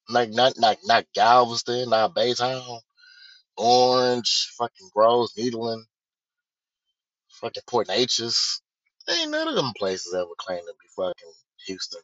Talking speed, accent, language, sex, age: 125 wpm, American, English, male, 20-39